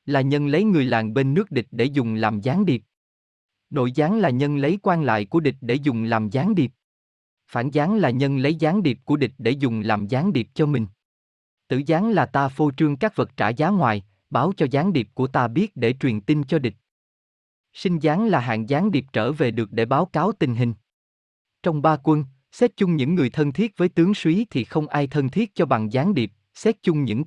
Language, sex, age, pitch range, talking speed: Vietnamese, male, 20-39, 115-165 Hz, 230 wpm